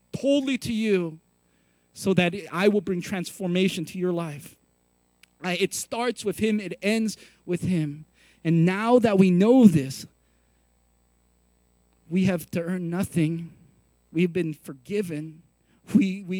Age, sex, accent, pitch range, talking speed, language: 40-59, male, American, 115-180 Hz, 130 wpm, English